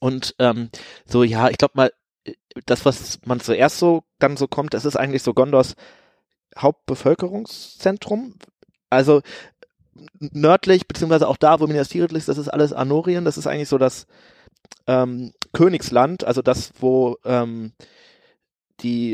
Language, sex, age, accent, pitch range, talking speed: German, male, 30-49, German, 120-145 Hz, 140 wpm